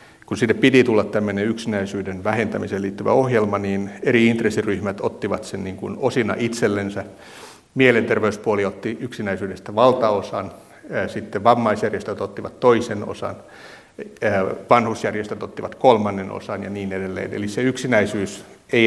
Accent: native